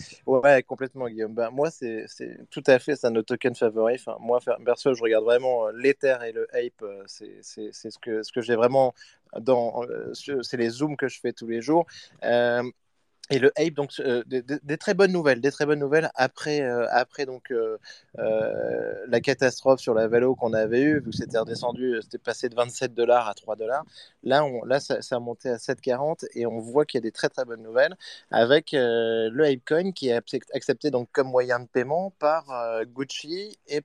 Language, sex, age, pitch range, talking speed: French, male, 20-39, 120-150 Hz, 215 wpm